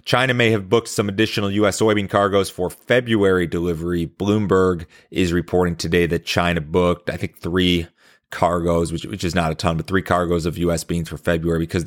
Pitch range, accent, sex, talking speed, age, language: 80-100 Hz, American, male, 190 wpm, 30-49, English